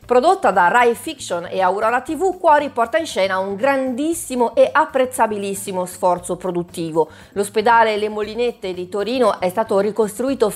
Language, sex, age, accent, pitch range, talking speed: Italian, female, 40-59, native, 185-245 Hz, 140 wpm